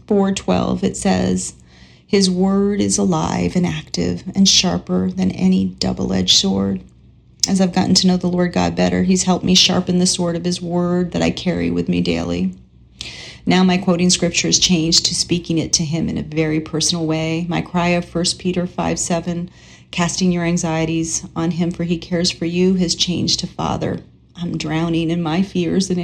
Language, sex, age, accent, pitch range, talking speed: English, female, 40-59, American, 155-185 Hz, 190 wpm